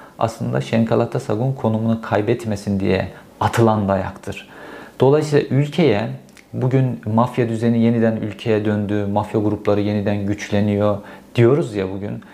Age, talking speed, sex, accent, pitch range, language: 50-69, 110 wpm, male, native, 105-125 Hz, Turkish